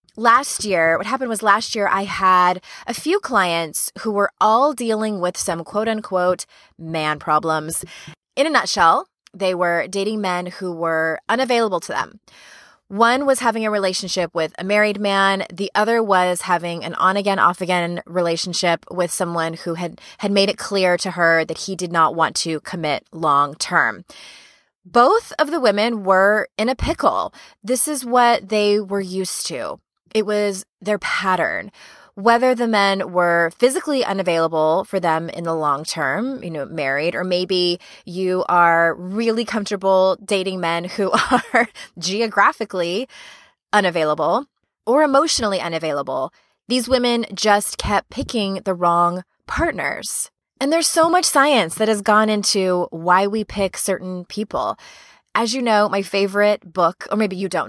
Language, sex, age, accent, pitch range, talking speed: English, female, 20-39, American, 170-215 Hz, 155 wpm